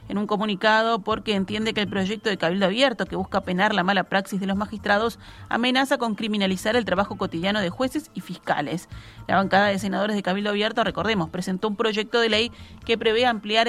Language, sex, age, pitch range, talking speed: Spanish, female, 30-49, 195-230 Hz, 200 wpm